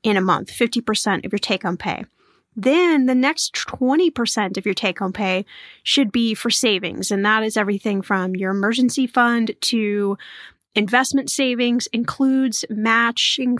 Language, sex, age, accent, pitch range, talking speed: English, female, 10-29, American, 210-270 Hz, 145 wpm